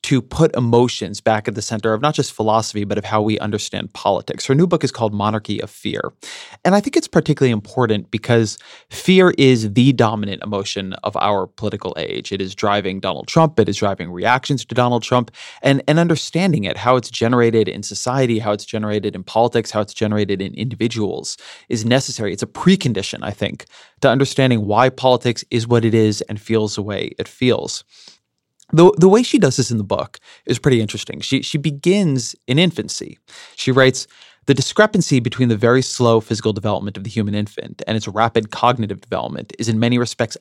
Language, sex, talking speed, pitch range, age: English, male, 200 wpm, 110-135 Hz, 20-39